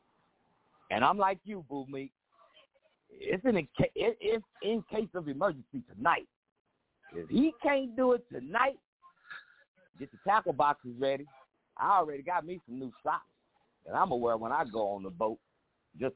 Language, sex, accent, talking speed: English, male, American, 165 wpm